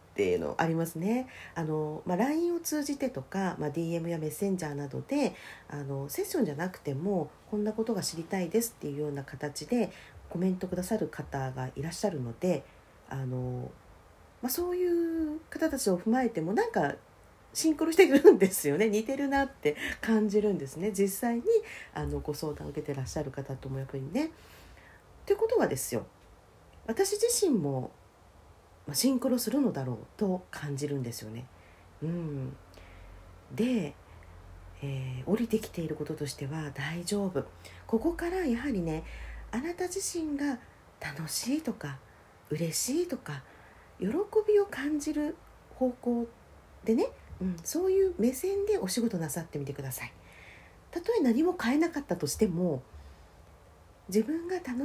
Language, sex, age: Japanese, female, 40-59